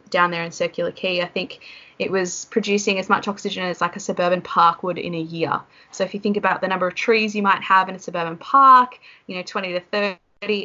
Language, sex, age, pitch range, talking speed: English, female, 20-39, 175-210 Hz, 240 wpm